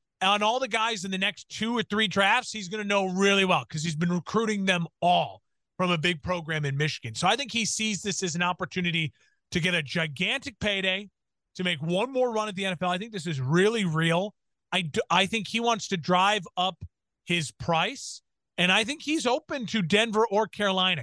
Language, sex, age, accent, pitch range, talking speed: English, male, 30-49, American, 170-200 Hz, 215 wpm